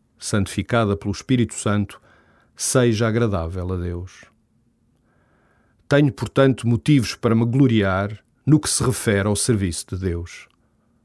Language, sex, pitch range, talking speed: Portuguese, male, 105-125 Hz, 120 wpm